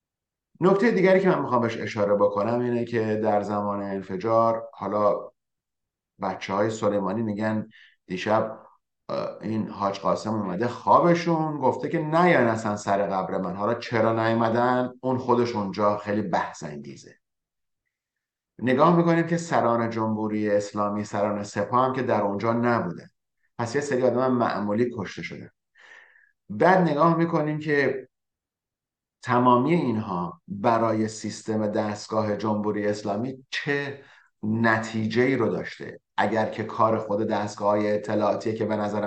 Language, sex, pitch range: English, male, 100-125 Hz